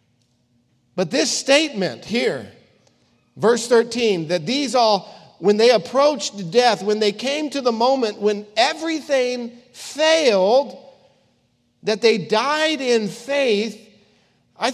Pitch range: 195-270 Hz